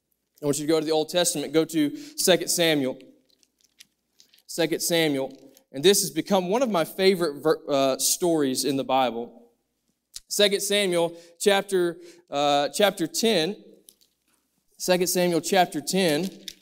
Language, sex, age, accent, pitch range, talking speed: English, male, 20-39, American, 165-210 Hz, 140 wpm